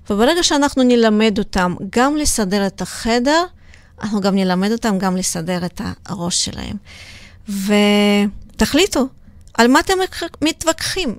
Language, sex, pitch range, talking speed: Hebrew, female, 195-250 Hz, 120 wpm